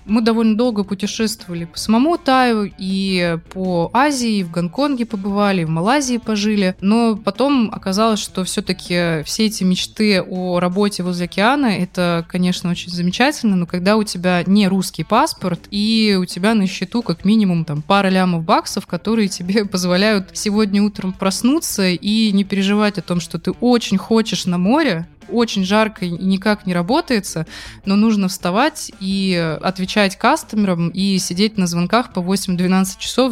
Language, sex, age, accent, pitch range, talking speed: Russian, female, 20-39, native, 180-215 Hz, 160 wpm